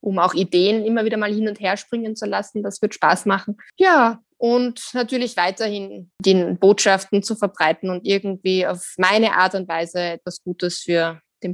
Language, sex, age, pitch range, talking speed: German, female, 20-39, 185-240 Hz, 180 wpm